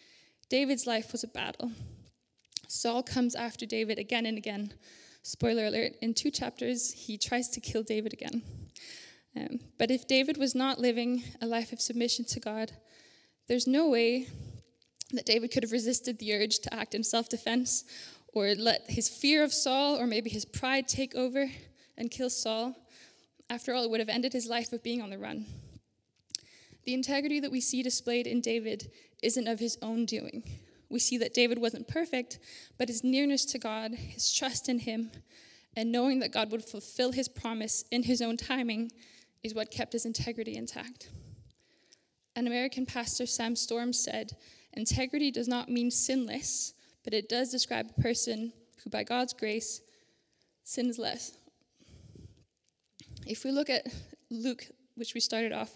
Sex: female